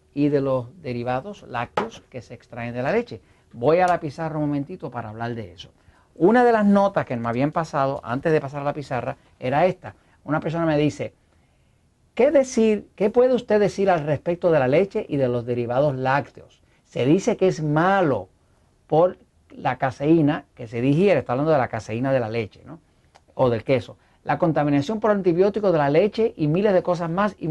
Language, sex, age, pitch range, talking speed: Spanish, male, 50-69, 120-170 Hz, 205 wpm